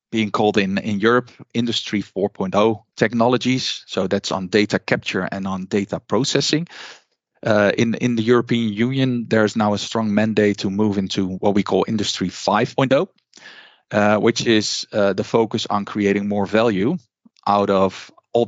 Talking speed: 155 wpm